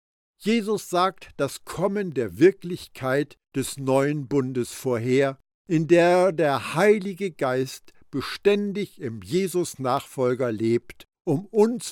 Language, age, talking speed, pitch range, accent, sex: German, 60-79, 105 wpm, 130-195 Hz, German, male